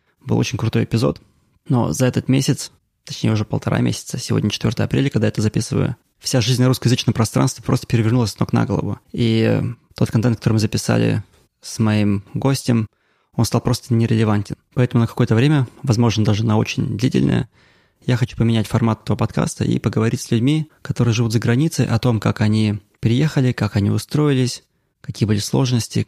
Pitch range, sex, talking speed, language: 110-130 Hz, male, 175 wpm, English